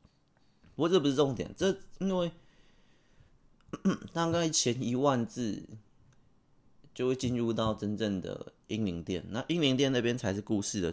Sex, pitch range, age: male, 100-130 Hz, 20-39